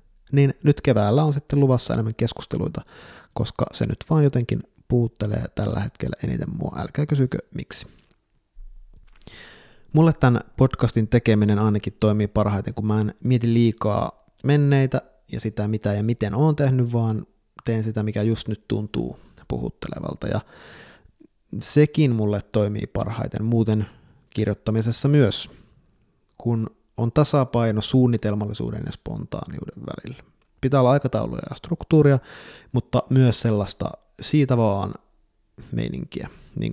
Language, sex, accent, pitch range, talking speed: Finnish, male, native, 105-135 Hz, 125 wpm